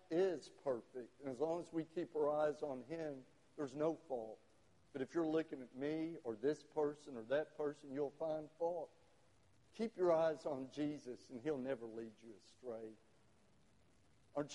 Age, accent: 60-79, American